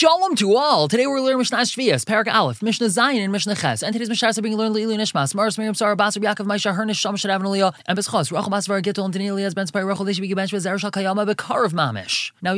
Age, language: 20-39, English